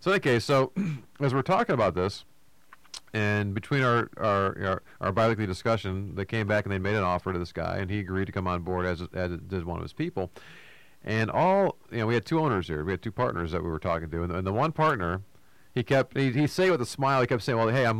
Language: English